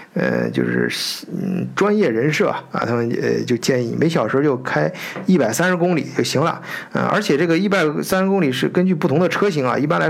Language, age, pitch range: Chinese, 50-69, 125-180 Hz